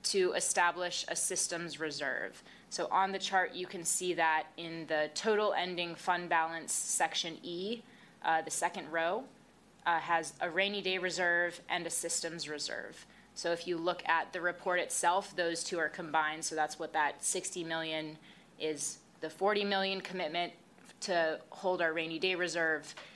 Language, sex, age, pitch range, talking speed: English, female, 20-39, 165-195 Hz, 165 wpm